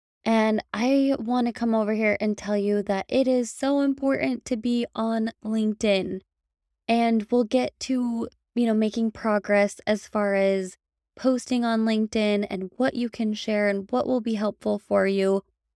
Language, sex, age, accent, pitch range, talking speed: English, female, 20-39, American, 205-235 Hz, 170 wpm